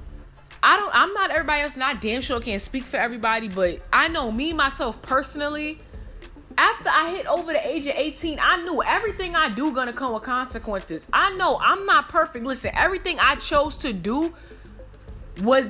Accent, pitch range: American, 230-305 Hz